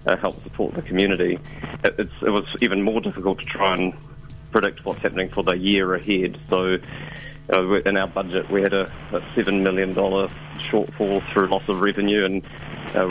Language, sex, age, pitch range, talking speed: English, male, 30-49, 95-105 Hz, 180 wpm